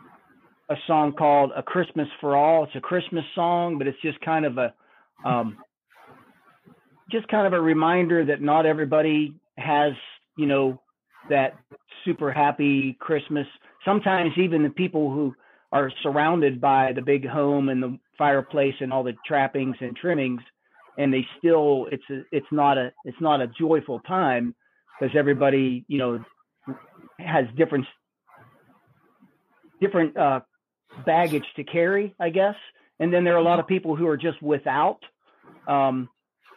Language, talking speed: English, 150 wpm